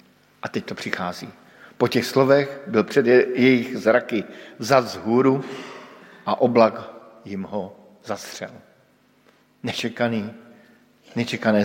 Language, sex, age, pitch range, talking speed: Slovak, male, 50-69, 115-150 Hz, 110 wpm